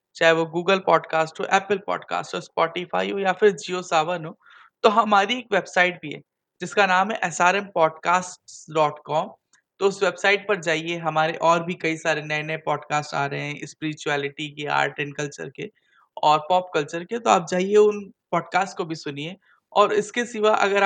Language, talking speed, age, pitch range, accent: Hindi, 140 wpm, 20-39, 160-195 Hz, native